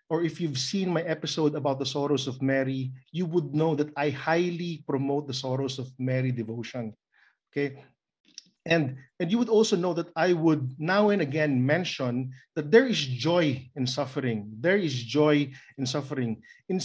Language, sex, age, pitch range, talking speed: English, male, 50-69, 135-195 Hz, 175 wpm